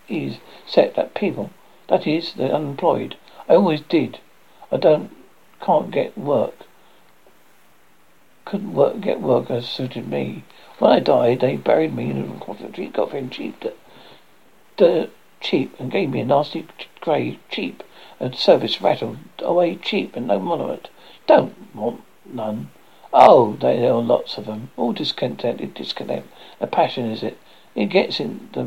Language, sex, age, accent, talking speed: English, male, 60-79, British, 150 wpm